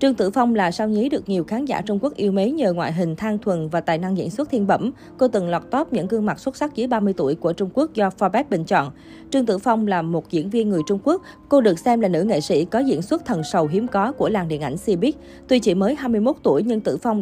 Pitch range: 175-230 Hz